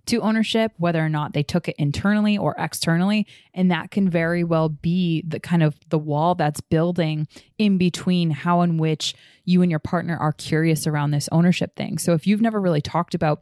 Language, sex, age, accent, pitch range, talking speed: English, female, 20-39, American, 155-180 Hz, 205 wpm